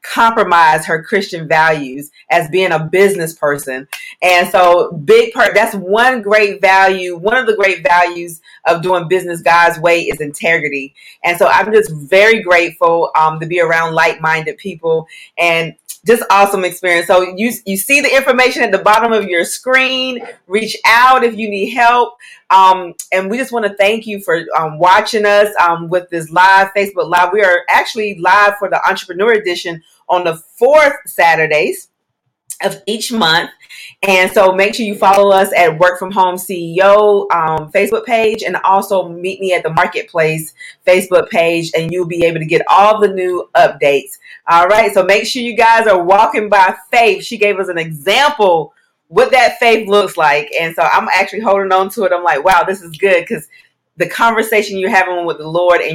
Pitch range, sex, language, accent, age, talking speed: 170-210 Hz, female, English, American, 40-59, 185 wpm